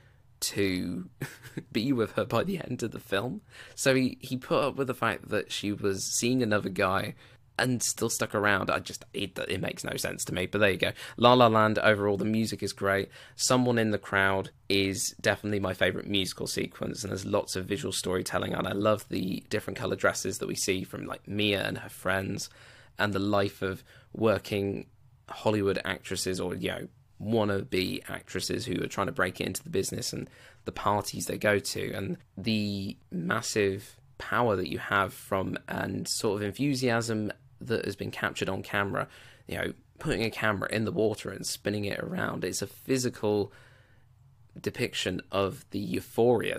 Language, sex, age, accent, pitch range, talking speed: English, male, 20-39, British, 100-120 Hz, 185 wpm